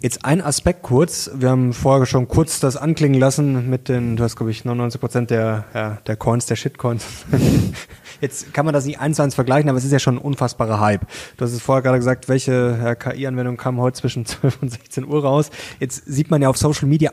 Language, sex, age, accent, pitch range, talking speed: German, male, 20-39, German, 130-150 Hz, 230 wpm